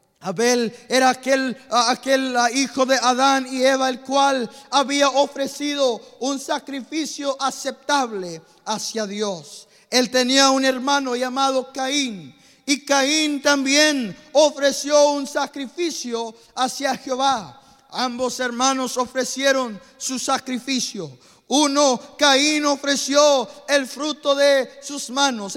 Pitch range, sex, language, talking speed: 250-280 Hz, male, English, 105 wpm